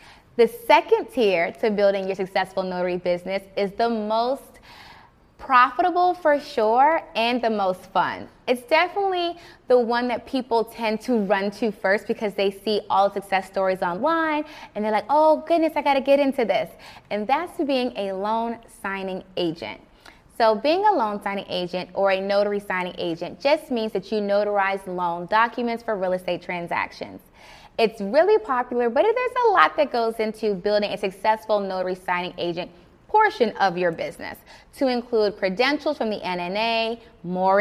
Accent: American